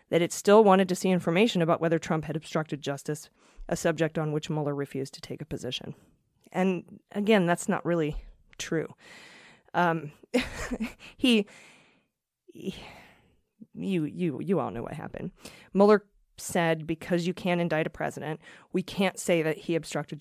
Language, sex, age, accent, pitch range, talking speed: English, female, 30-49, American, 155-190 Hz, 155 wpm